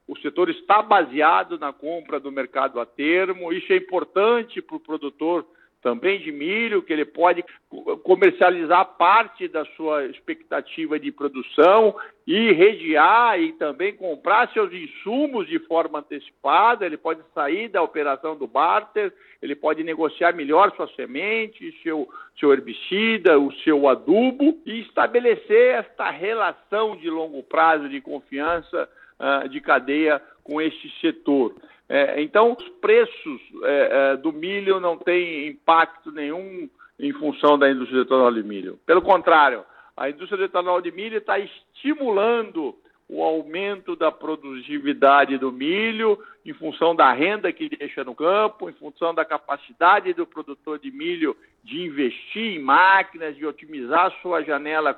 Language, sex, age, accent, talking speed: Portuguese, male, 50-69, Brazilian, 140 wpm